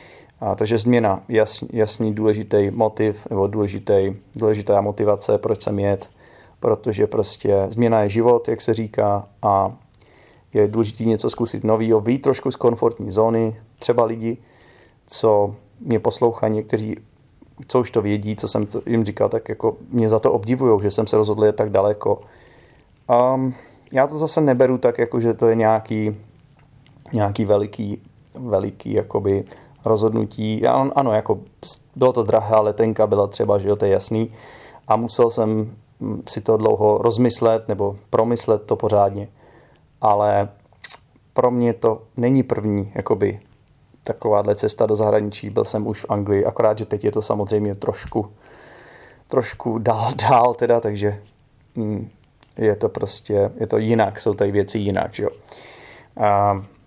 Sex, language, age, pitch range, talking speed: male, Czech, 30-49, 105-120 Hz, 150 wpm